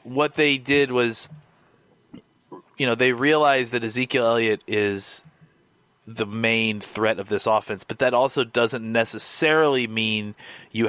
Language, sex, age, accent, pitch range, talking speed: English, male, 30-49, American, 105-125 Hz, 140 wpm